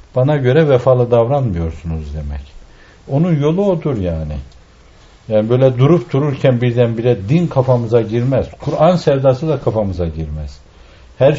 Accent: native